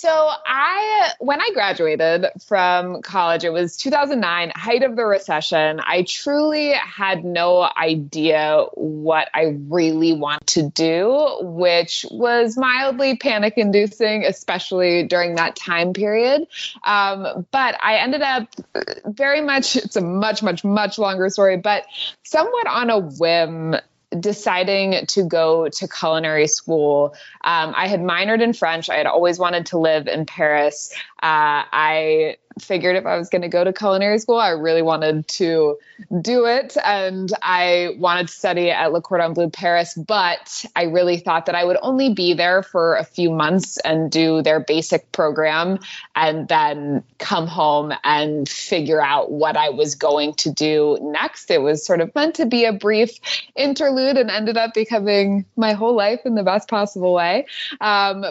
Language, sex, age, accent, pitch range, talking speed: English, female, 20-39, American, 165-230 Hz, 160 wpm